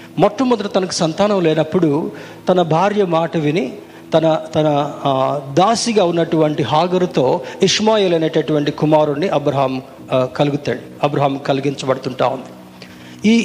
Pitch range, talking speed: 135-190 Hz, 100 wpm